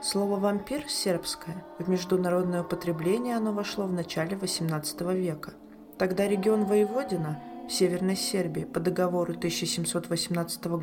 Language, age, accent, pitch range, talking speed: Russian, 20-39, native, 165-205 Hz, 115 wpm